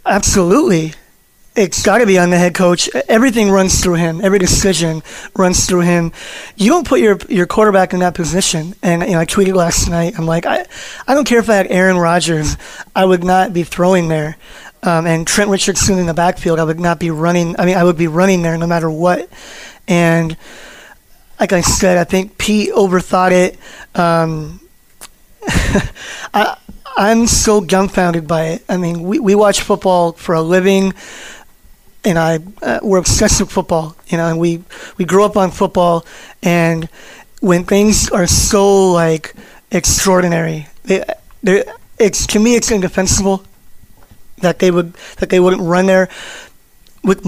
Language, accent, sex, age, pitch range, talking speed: English, American, male, 20-39, 170-195 Hz, 170 wpm